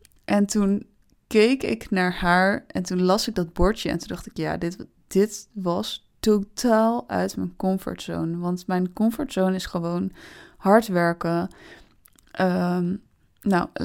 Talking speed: 145 wpm